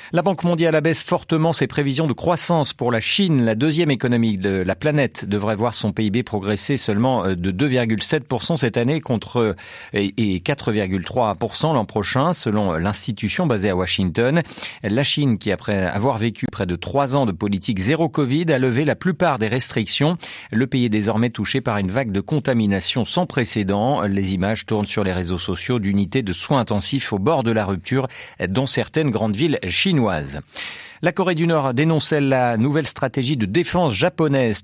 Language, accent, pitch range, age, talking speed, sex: French, French, 105-150 Hz, 40-59, 175 wpm, male